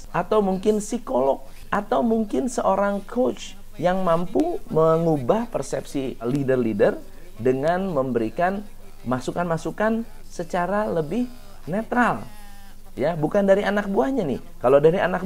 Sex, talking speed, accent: male, 105 wpm, native